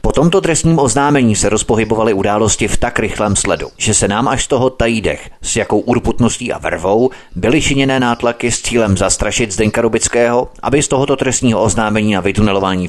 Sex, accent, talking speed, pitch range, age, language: male, native, 175 wpm, 95-120 Hz, 30-49, Czech